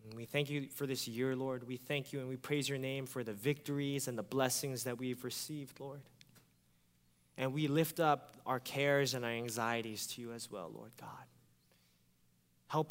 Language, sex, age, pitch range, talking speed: English, male, 20-39, 115-155 Hz, 195 wpm